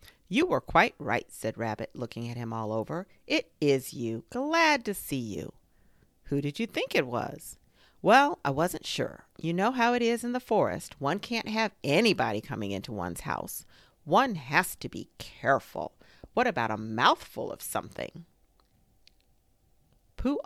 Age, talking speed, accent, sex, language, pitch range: 40-59, 165 wpm, American, female, English, 115-185 Hz